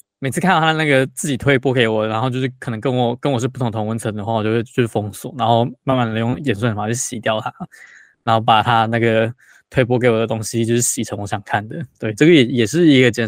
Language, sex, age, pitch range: Chinese, male, 20-39, 110-130 Hz